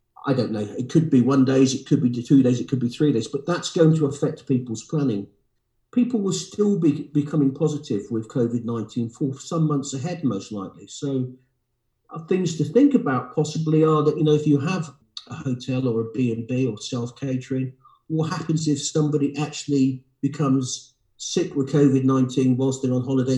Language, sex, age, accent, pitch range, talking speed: English, male, 50-69, British, 125-155 Hz, 190 wpm